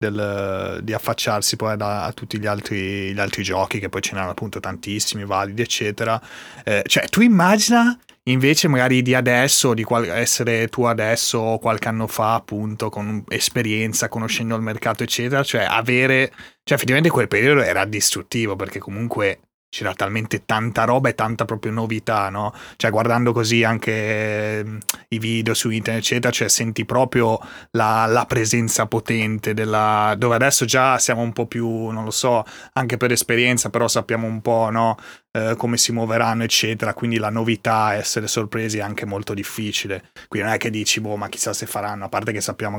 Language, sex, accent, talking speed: Italian, male, native, 175 wpm